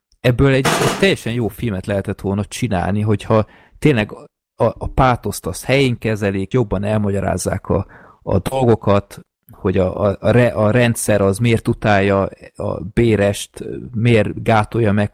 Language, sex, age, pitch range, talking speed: Hungarian, male, 30-49, 100-120 Hz, 145 wpm